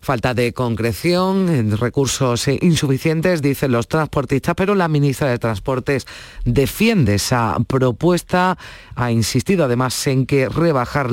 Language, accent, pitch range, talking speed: Spanish, Spanish, 120-150 Hz, 120 wpm